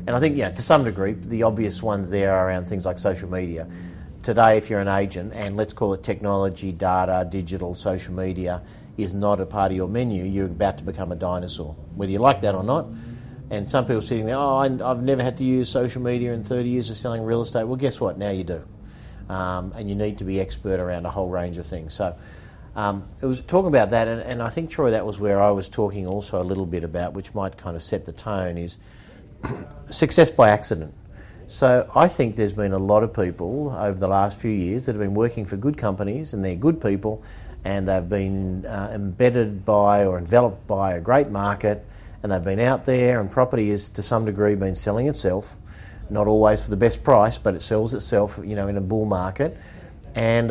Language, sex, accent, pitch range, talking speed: English, male, Australian, 95-120 Hz, 230 wpm